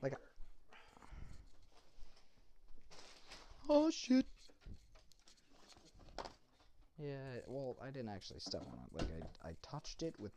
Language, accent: English, American